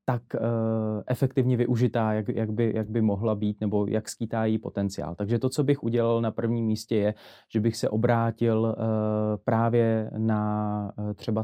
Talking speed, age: 175 wpm, 20-39